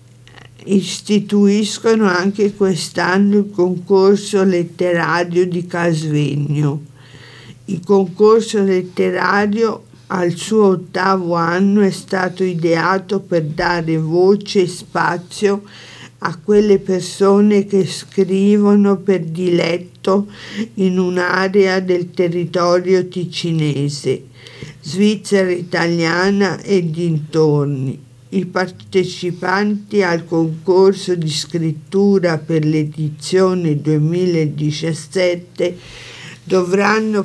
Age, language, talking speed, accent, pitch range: 50-69, Italian, 80 wpm, native, 160-195 Hz